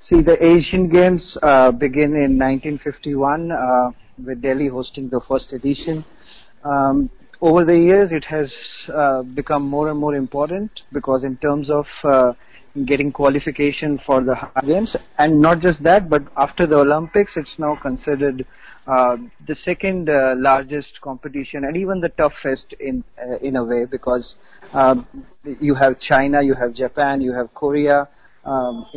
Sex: male